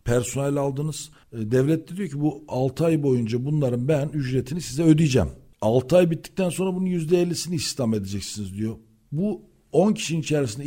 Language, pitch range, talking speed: Turkish, 125-160 Hz, 160 wpm